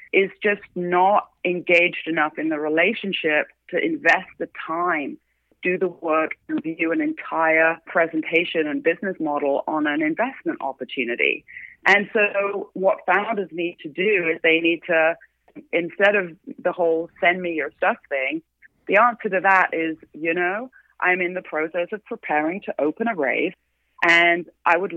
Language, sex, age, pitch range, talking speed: English, female, 30-49, 155-185 Hz, 160 wpm